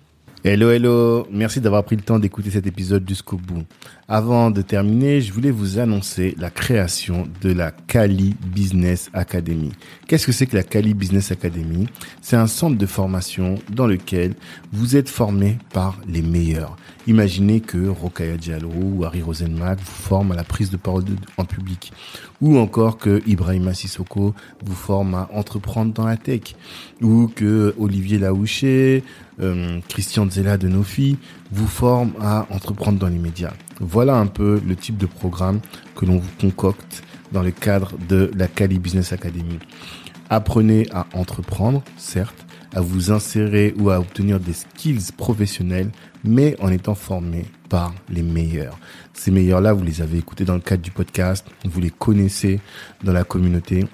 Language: French